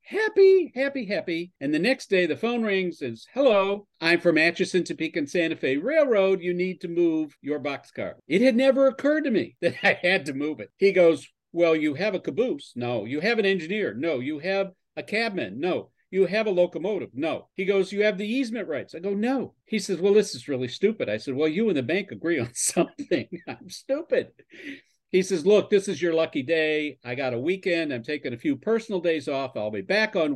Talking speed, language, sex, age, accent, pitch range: 225 wpm, English, male, 50-69, American, 145-210 Hz